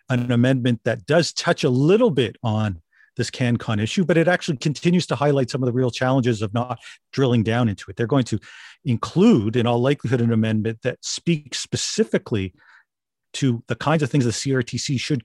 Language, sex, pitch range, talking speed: English, male, 115-145 Hz, 195 wpm